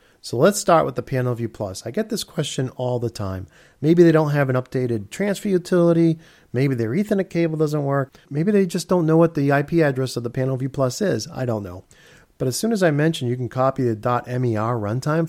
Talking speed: 225 wpm